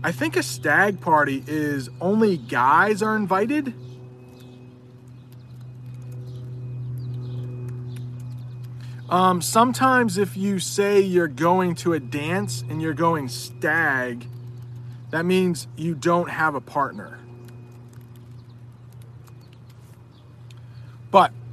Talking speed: 90 wpm